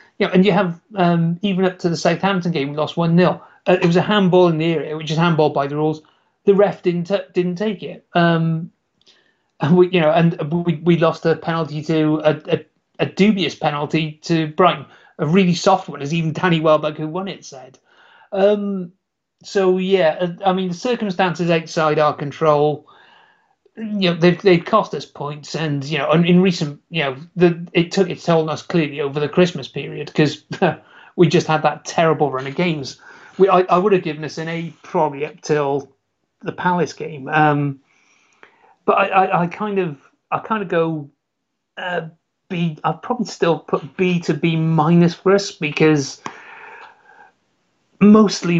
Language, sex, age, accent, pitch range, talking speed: English, male, 30-49, British, 155-185 Hz, 190 wpm